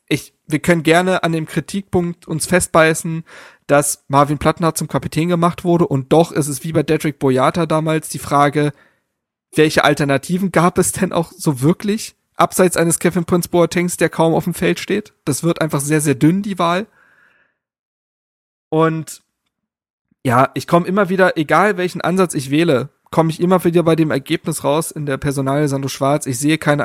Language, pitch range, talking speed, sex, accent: German, 145-175 Hz, 175 wpm, male, German